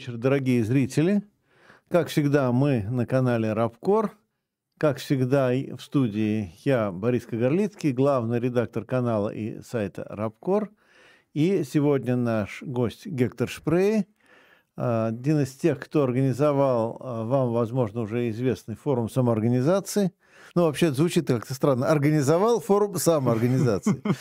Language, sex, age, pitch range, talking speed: Russian, male, 50-69, 120-165 Hz, 115 wpm